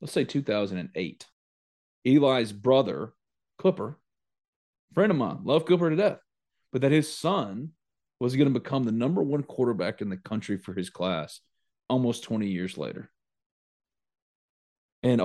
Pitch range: 110-145 Hz